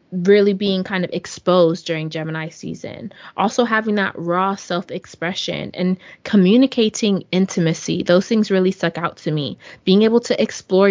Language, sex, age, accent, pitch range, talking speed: English, female, 20-39, American, 175-220 Hz, 150 wpm